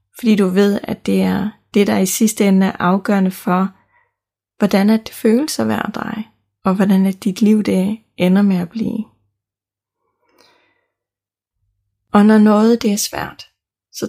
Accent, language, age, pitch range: native, Danish, 30-49, 190-225 Hz